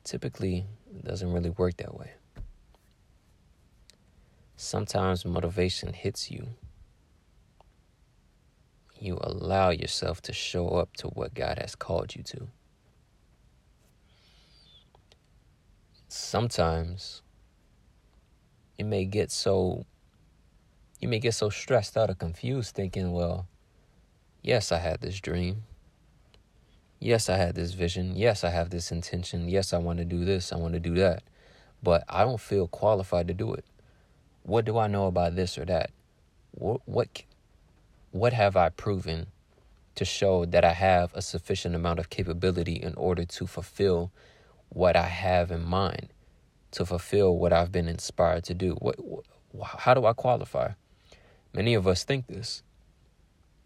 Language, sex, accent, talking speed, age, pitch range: English, male, American, 140 wpm, 30-49, 85-100 Hz